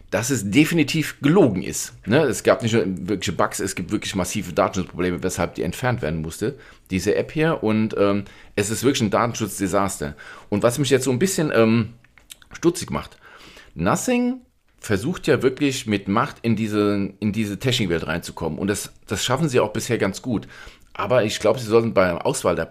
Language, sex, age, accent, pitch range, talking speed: German, male, 40-59, German, 90-120 Hz, 190 wpm